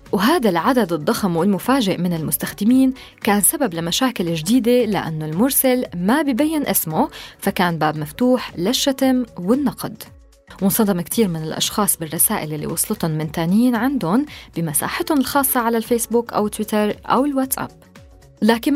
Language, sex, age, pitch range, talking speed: Arabic, female, 20-39, 180-260 Hz, 125 wpm